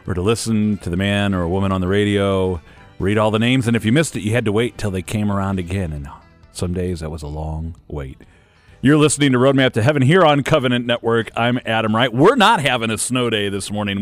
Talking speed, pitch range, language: 255 wpm, 95-115 Hz, English